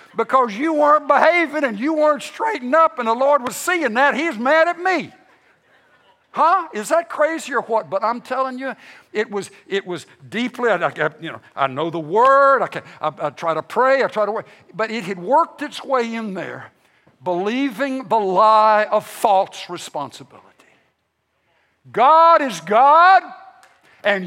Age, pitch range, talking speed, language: 60-79, 200-275 Hz, 170 wpm, English